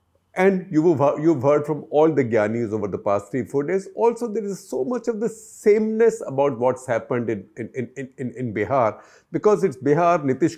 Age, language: 50-69, English